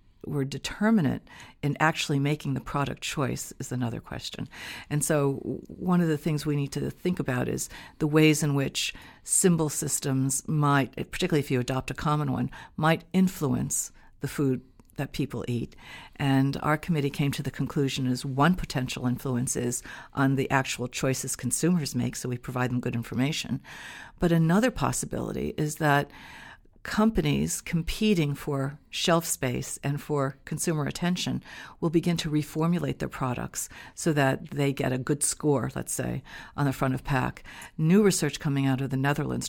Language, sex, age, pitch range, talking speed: English, female, 60-79, 130-155 Hz, 165 wpm